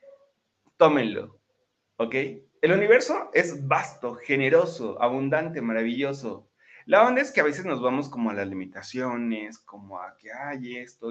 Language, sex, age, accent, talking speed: Spanish, male, 30-49, Mexican, 145 wpm